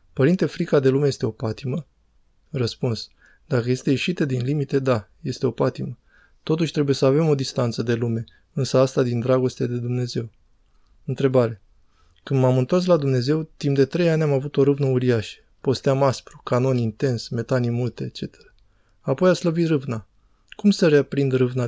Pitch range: 125-145 Hz